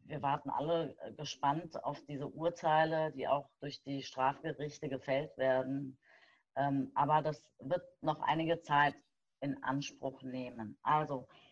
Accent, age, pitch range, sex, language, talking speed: German, 30-49, 145-175 Hz, female, German, 125 wpm